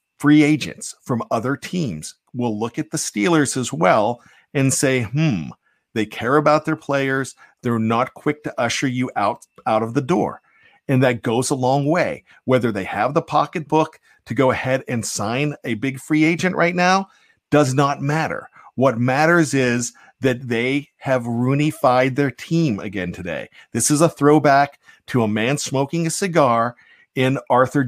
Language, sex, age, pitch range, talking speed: English, male, 50-69, 125-155 Hz, 170 wpm